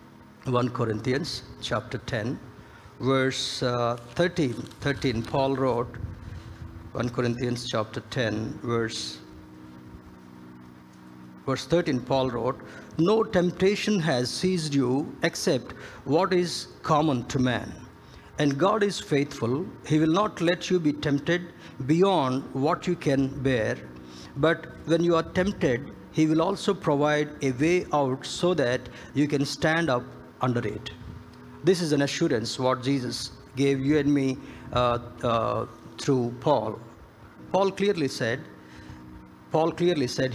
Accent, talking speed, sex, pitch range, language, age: native, 130 wpm, male, 115-155 Hz, Telugu, 60-79